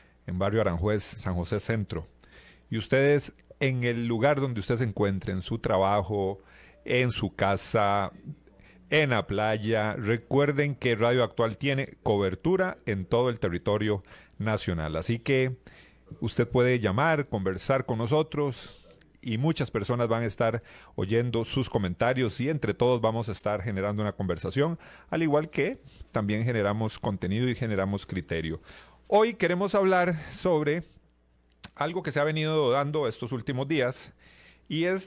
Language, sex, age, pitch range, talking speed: Spanish, male, 40-59, 105-145 Hz, 145 wpm